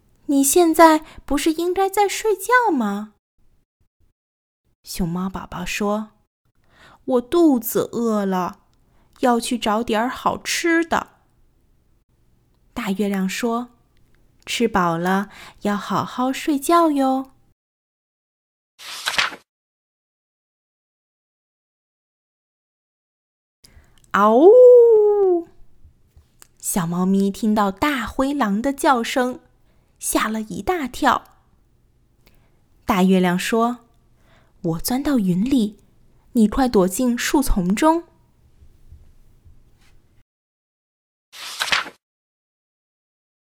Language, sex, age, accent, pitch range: Chinese, female, 20-39, native, 205-285 Hz